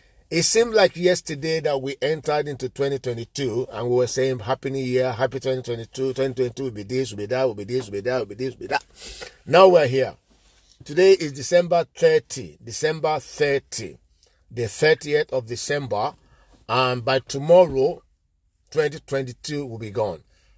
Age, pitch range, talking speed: 50-69, 130-165 Hz, 170 wpm